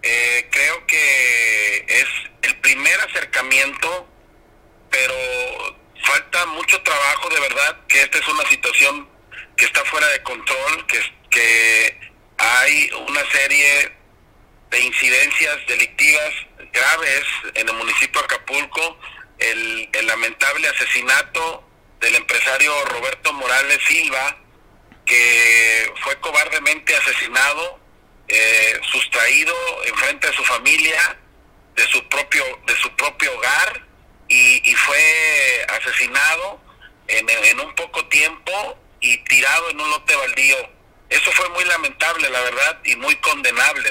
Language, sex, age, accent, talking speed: Spanish, male, 40-59, Mexican, 120 wpm